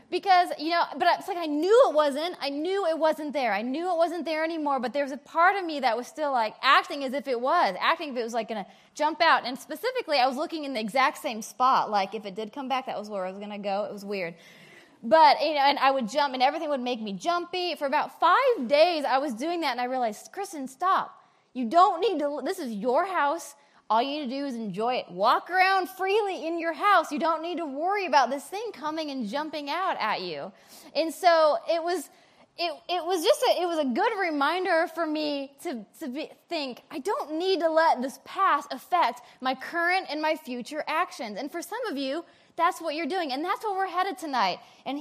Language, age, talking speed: English, 20-39, 250 wpm